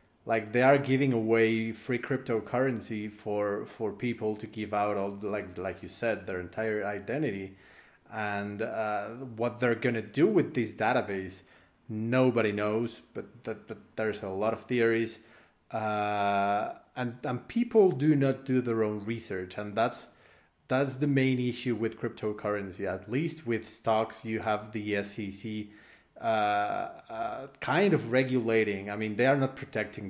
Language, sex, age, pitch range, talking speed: English, male, 30-49, 105-130 Hz, 155 wpm